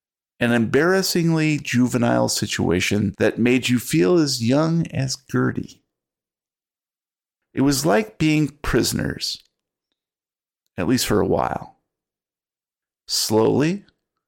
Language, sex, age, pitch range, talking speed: English, male, 50-69, 105-160 Hz, 95 wpm